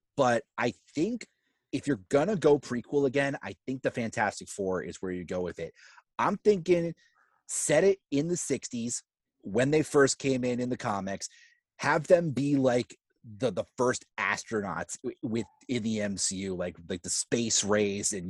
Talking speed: 180 wpm